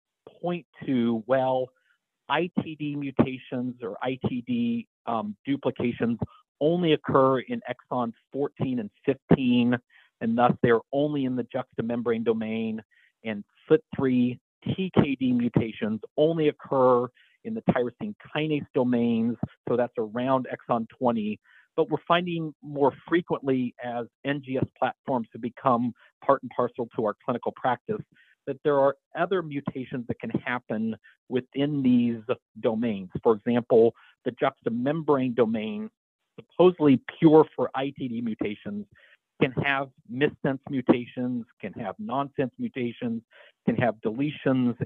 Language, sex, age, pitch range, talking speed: English, male, 50-69, 120-155 Hz, 120 wpm